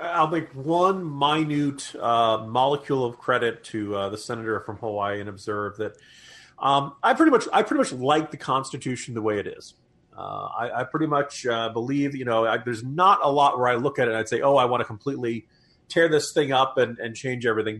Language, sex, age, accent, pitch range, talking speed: English, male, 30-49, American, 120-160 Hz, 220 wpm